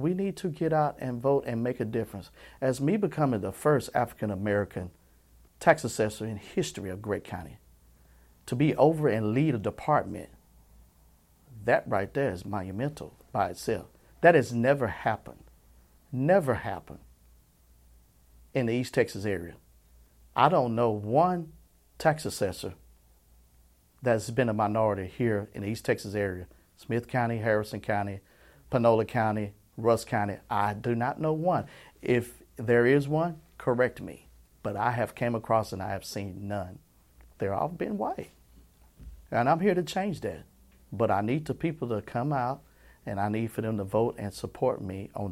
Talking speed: 165 wpm